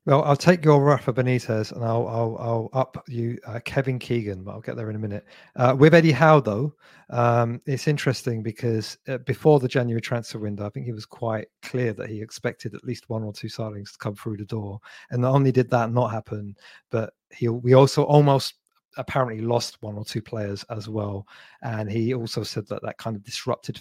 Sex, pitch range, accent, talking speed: male, 115-150 Hz, British, 215 wpm